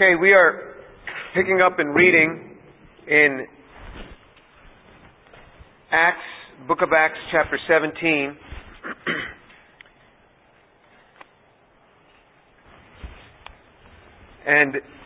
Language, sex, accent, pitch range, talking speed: English, male, American, 140-170 Hz, 60 wpm